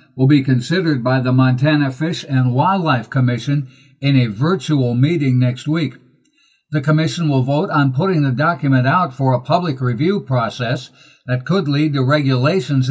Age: 60-79